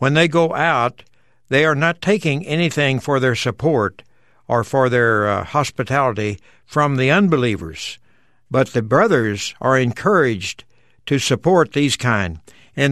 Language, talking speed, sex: English, 140 wpm, male